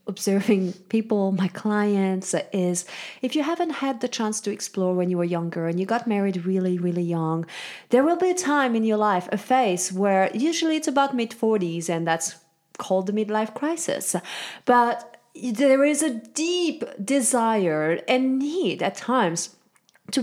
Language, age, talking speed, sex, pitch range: English, 30-49, 165 wpm, female, 200-265 Hz